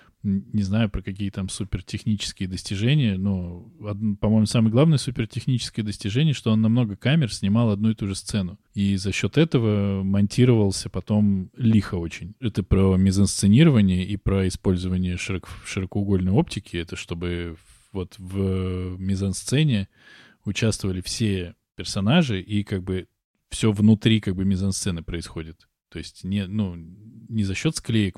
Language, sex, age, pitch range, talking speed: Russian, male, 20-39, 95-110 Hz, 140 wpm